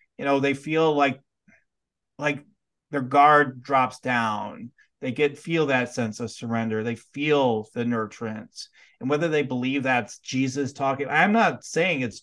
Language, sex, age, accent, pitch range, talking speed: English, male, 30-49, American, 125-150 Hz, 155 wpm